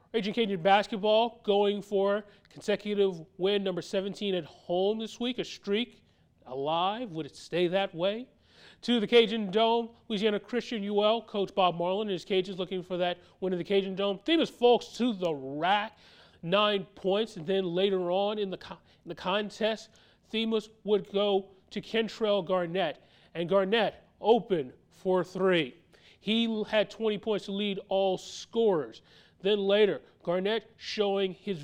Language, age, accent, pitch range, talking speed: English, 30-49, American, 180-220 Hz, 155 wpm